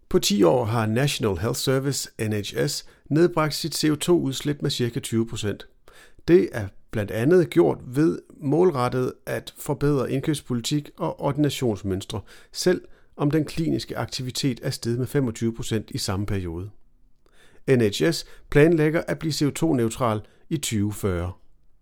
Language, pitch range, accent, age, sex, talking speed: Danish, 110-145 Hz, native, 40-59, male, 125 wpm